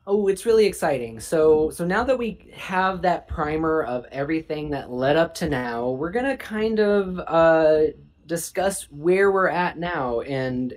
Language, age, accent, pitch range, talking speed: English, 20-39, American, 130-170 Hz, 175 wpm